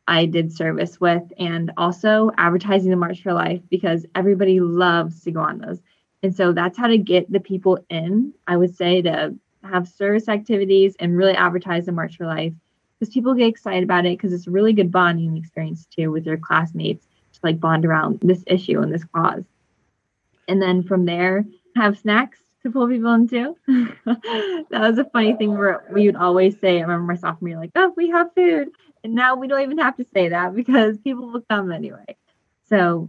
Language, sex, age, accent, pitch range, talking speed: English, female, 20-39, American, 170-210 Hz, 205 wpm